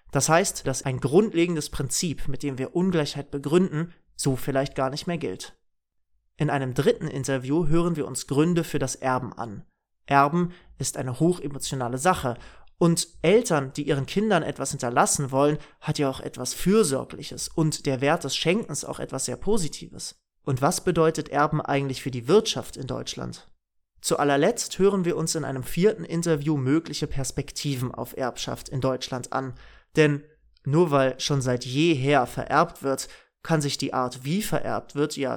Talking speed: 165 wpm